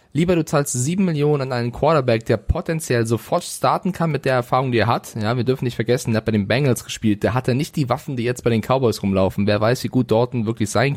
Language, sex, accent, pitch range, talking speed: German, male, German, 120-145 Hz, 270 wpm